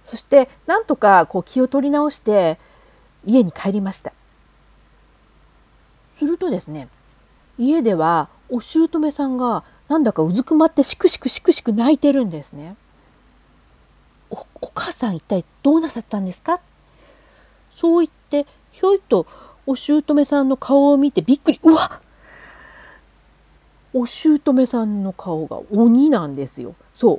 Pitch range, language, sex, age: 195-320 Hz, Japanese, female, 40-59